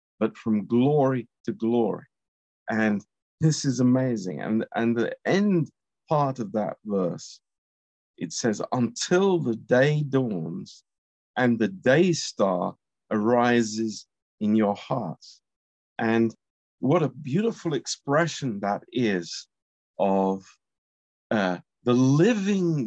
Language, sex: Romanian, male